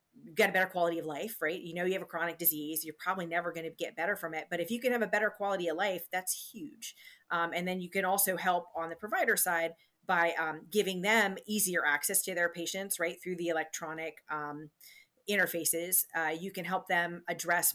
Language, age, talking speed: English, 30-49, 225 wpm